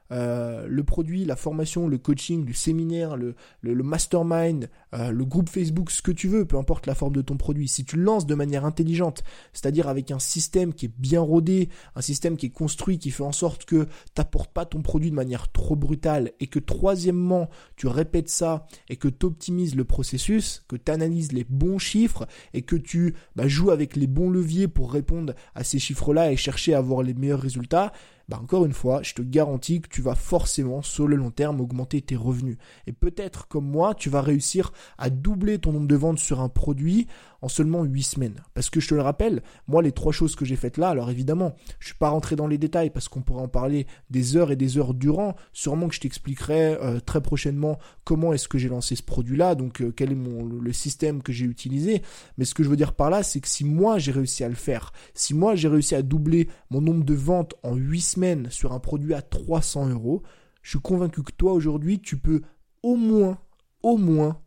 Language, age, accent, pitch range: French, 20-39, French, 135-170 Hz